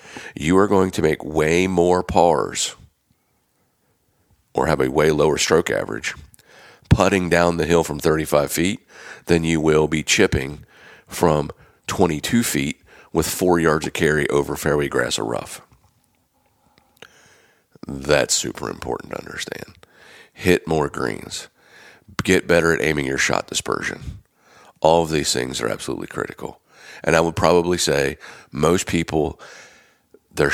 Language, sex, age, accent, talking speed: English, male, 40-59, American, 140 wpm